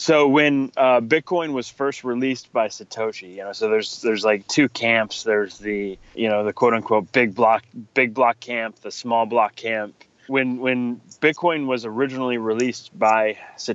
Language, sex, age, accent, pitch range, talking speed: English, male, 20-39, American, 110-140 Hz, 180 wpm